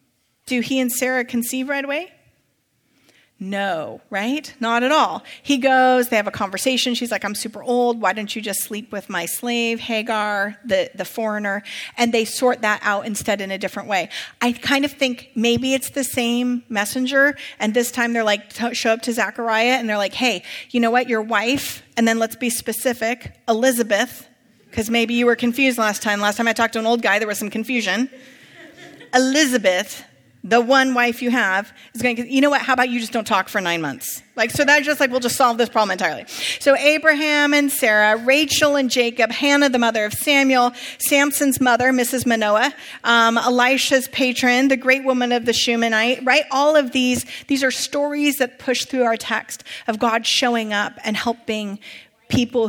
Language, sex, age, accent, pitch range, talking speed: English, female, 40-59, American, 215-260 Hz, 195 wpm